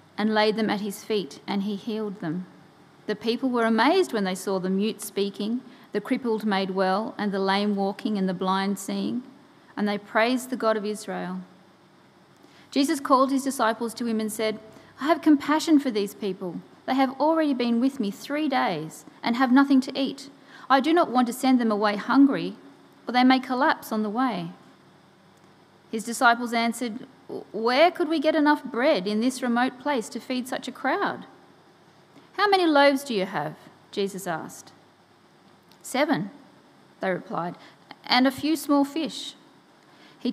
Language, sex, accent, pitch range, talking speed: English, female, Australian, 205-270 Hz, 175 wpm